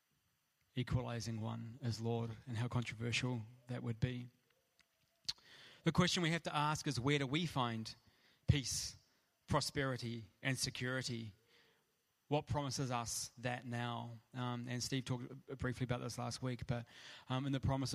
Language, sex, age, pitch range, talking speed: English, male, 20-39, 115-135 Hz, 145 wpm